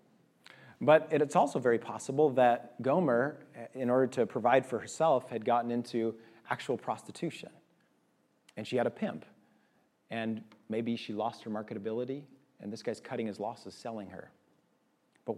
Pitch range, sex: 110-140 Hz, male